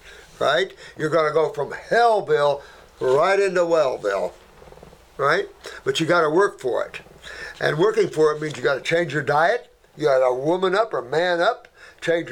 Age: 60-79